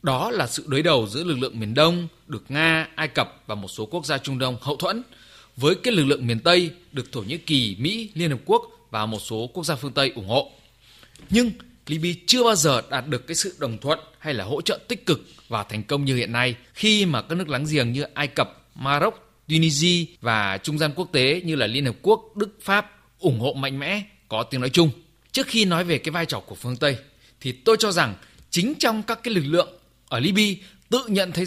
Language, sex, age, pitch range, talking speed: Vietnamese, male, 20-39, 125-185 Hz, 240 wpm